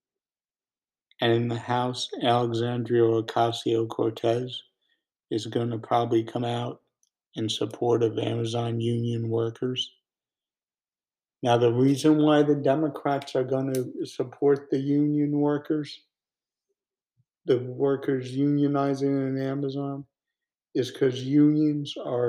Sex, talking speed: male, 110 wpm